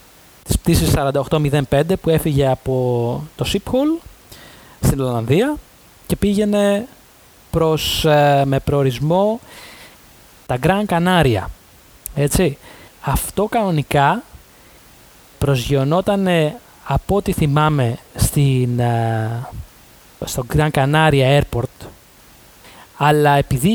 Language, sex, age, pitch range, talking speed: Greek, male, 20-39, 135-200 Hz, 75 wpm